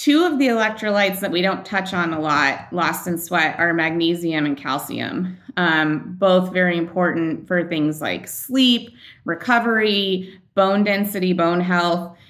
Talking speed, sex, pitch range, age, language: 150 wpm, female, 155-185 Hz, 30-49, English